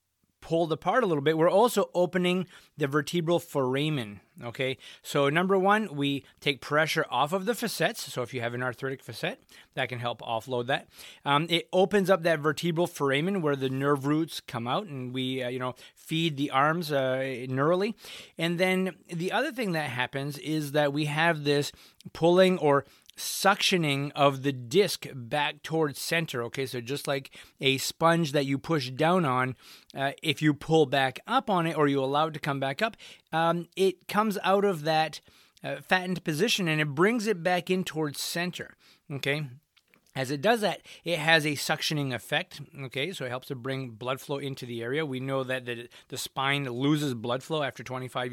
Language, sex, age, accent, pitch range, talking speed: English, male, 30-49, American, 135-175 Hz, 190 wpm